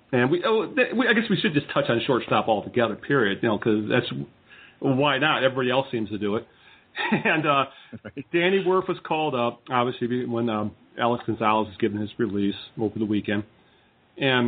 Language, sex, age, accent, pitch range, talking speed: English, male, 40-59, American, 115-155 Hz, 185 wpm